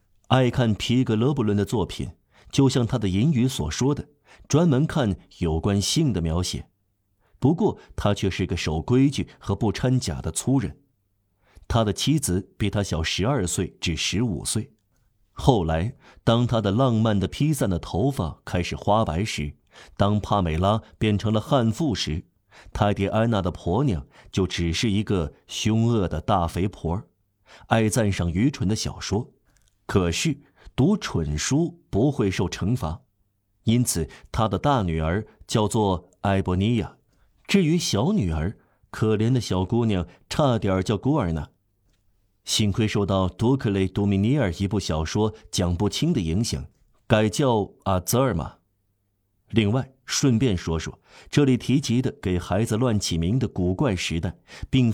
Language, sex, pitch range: Chinese, male, 95-120 Hz